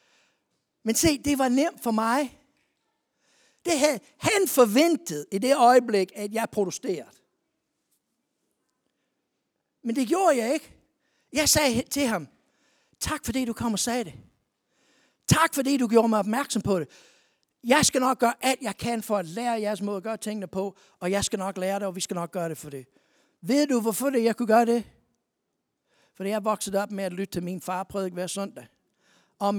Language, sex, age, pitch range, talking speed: Danish, male, 60-79, 200-245 Hz, 185 wpm